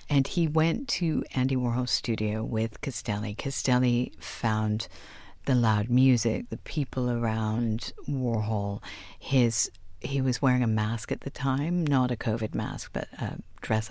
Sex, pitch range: female, 110-145 Hz